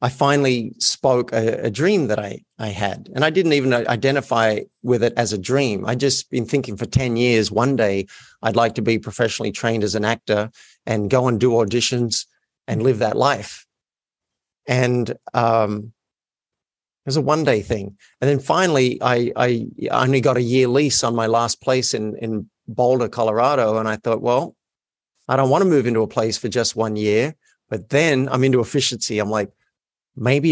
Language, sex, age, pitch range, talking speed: English, male, 50-69, 115-135 Hz, 195 wpm